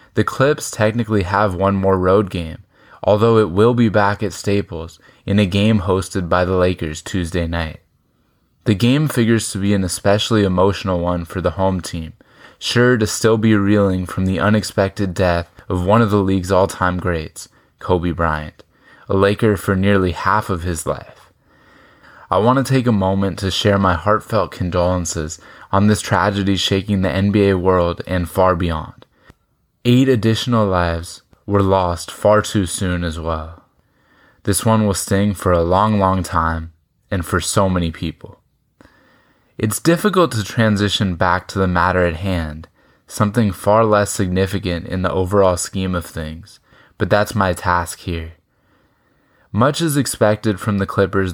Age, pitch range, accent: 20-39, 90-105 Hz, American